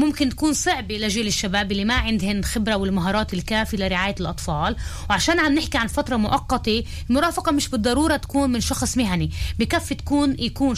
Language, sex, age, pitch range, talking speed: Hebrew, female, 20-39, 195-255 Hz, 160 wpm